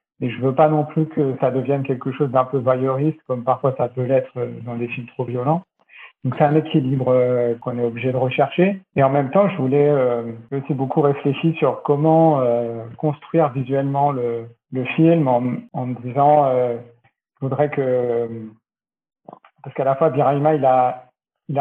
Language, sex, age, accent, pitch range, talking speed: French, male, 50-69, French, 125-150 Hz, 185 wpm